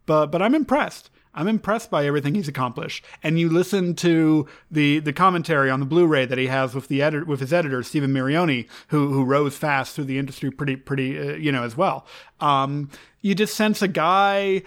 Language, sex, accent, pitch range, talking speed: English, male, American, 135-165 Hz, 225 wpm